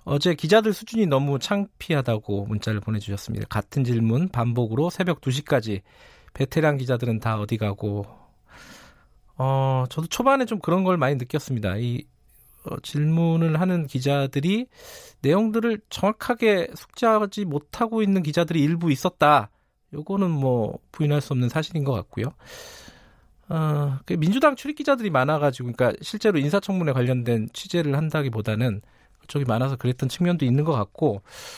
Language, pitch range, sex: Korean, 125-180 Hz, male